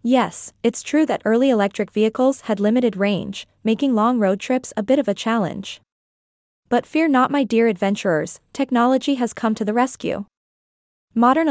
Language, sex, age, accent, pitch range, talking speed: English, female, 20-39, American, 205-260 Hz, 165 wpm